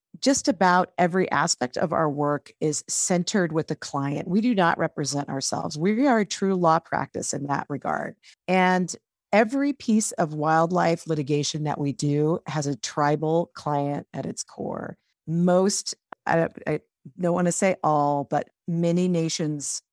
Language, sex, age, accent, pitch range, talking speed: English, female, 50-69, American, 150-185 Hz, 155 wpm